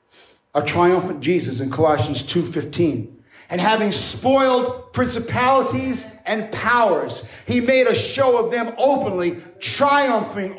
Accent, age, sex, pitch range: American, 50-69, male, 220-285 Hz